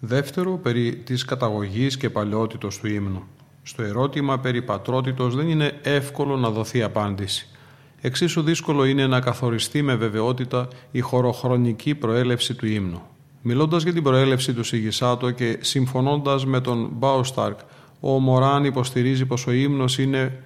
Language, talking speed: Greek, 145 wpm